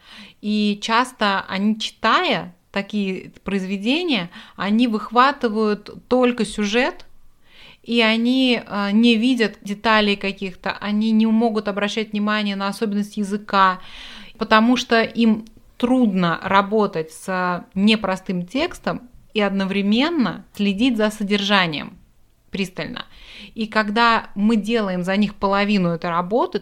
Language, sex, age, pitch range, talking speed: Russian, female, 30-49, 195-230 Hz, 105 wpm